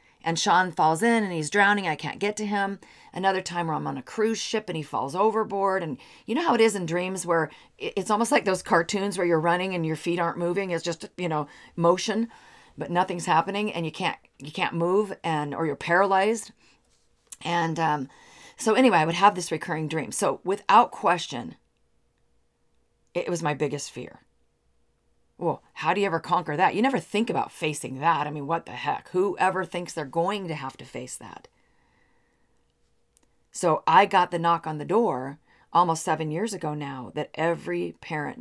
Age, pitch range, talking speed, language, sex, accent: 40-59, 155-195 Hz, 195 wpm, English, female, American